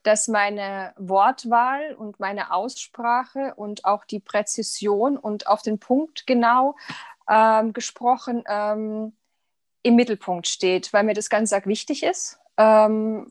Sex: female